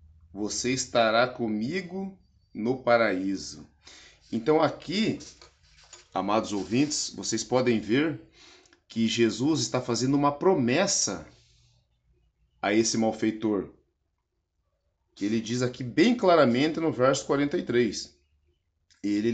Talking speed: 95 wpm